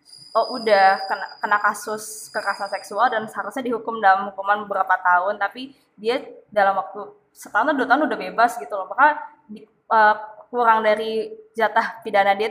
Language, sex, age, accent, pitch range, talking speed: Indonesian, female, 20-39, native, 200-235 Hz, 155 wpm